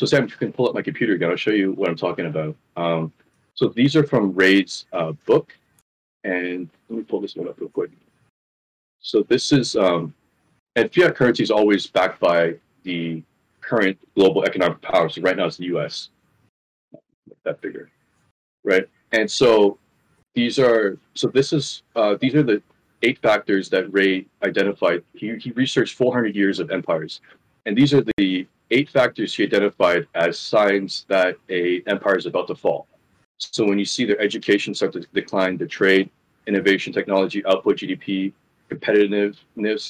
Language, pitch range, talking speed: English, 90-110 Hz, 175 wpm